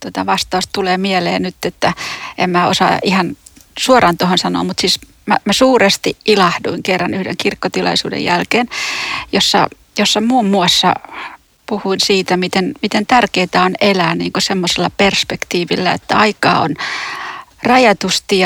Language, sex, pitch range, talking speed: Finnish, female, 180-225 Hz, 135 wpm